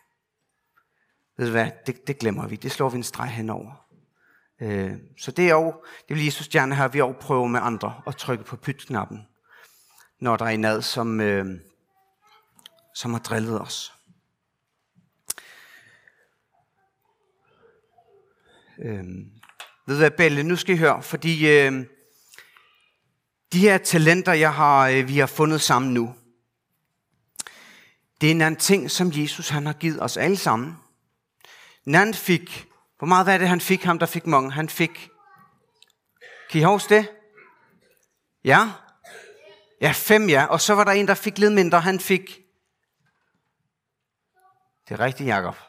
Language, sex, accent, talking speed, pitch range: Danish, male, native, 150 wpm, 130-190 Hz